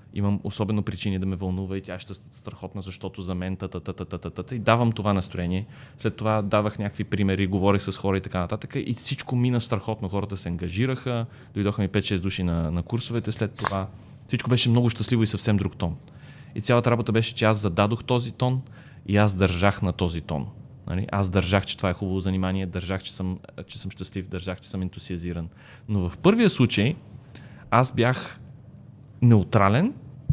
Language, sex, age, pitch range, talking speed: Bulgarian, male, 30-49, 95-130 Hz, 190 wpm